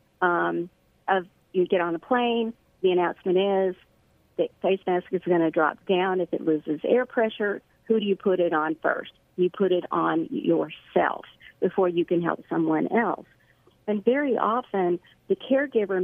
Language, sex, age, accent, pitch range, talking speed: English, female, 50-69, American, 175-225 Hz, 175 wpm